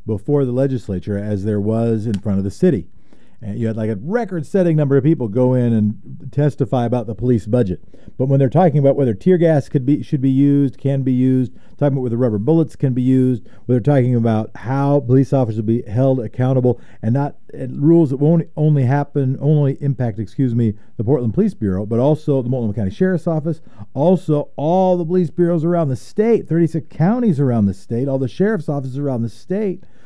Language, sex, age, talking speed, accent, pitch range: English, male, 50-69, 210 wpm, American, 115-150 Hz